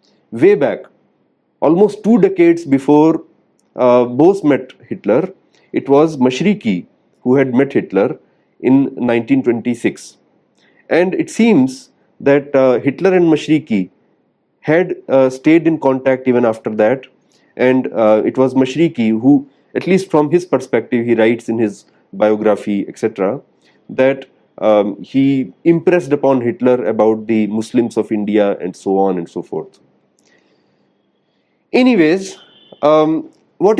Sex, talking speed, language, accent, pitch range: male, 130 wpm, English, Indian, 120-170 Hz